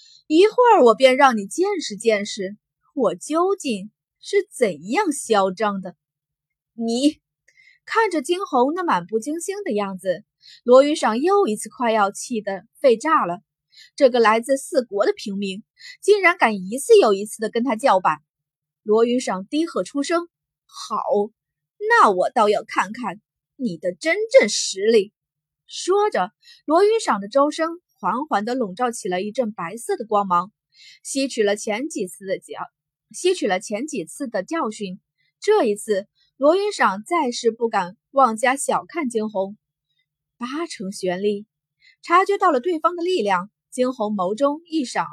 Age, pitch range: 20-39, 190-310 Hz